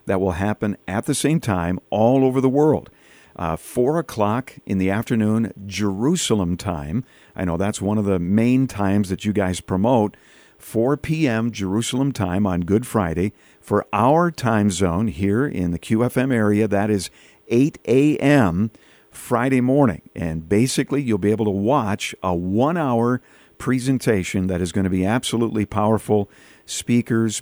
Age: 50-69